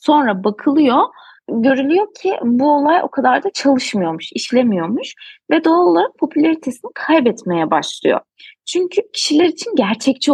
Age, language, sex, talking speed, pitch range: 30-49, Turkish, female, 120 wpm, 210-320 Hz